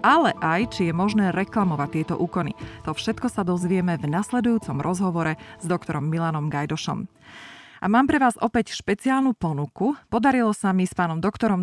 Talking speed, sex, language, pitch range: 165 wpm, female, Slovak, 165-215 Hz